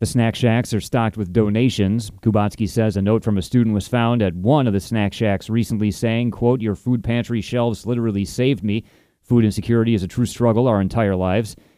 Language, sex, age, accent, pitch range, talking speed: English, male, 30-49, American, 105-125 Hz, 210 wpm